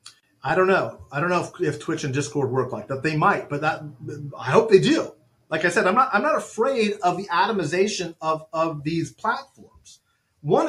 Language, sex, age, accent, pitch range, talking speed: English, male, 30-49, American, 135-185 Hz, 215 wpm